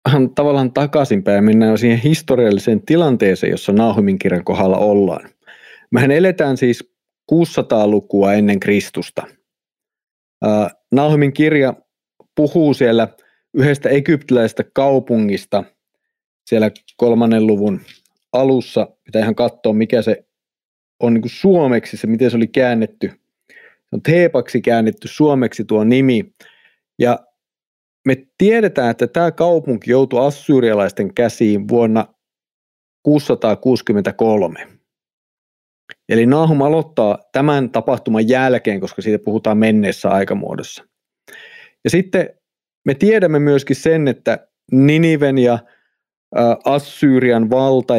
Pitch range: 110-145 Hz